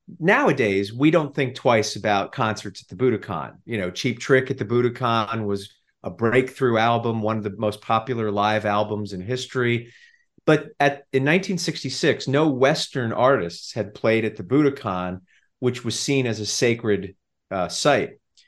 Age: 40-59